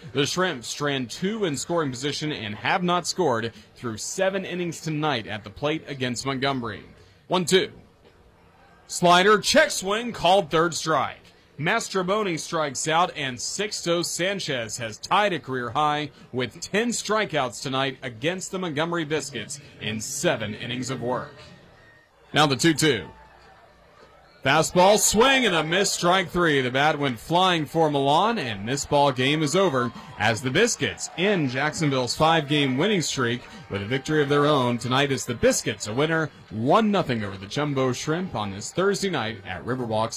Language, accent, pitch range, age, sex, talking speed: English, American, 120-175 Hz, 30-49, male, 160 wpm